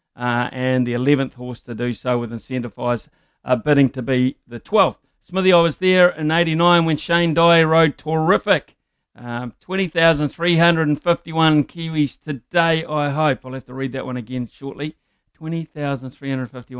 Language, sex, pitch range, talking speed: English, male, 125-155 Hz, 180 wpm